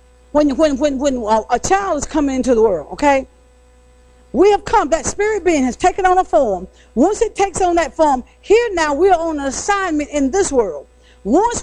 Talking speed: 205 wpm